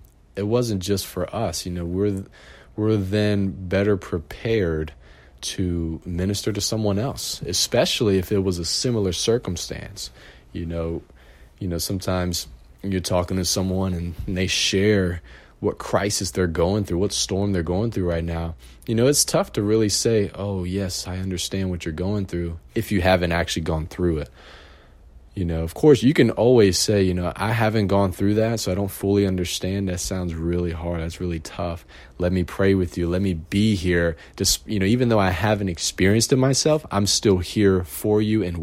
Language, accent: English, American